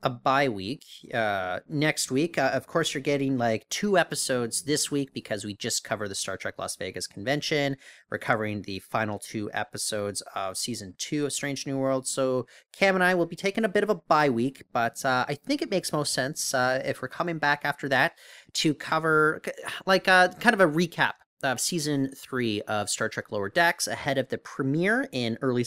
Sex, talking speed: male, 210 wpm